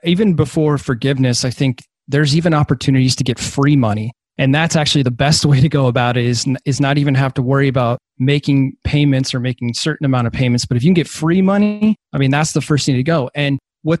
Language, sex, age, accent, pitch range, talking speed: English, male, 30-49, American, 130-150 Hz, 240 wpm